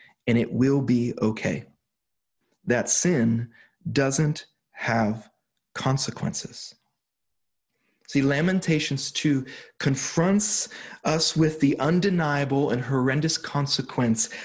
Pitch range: 130-165 Hz